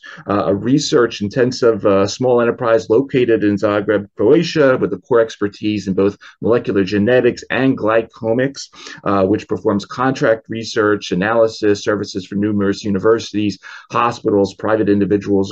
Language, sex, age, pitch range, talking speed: English, male, 30-49, 95-115 Hz, 130 wpm